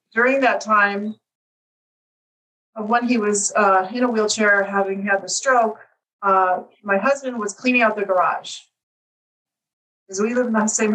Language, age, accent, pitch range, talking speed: English, 40-59, American, 185-230 Hz, 160 wpm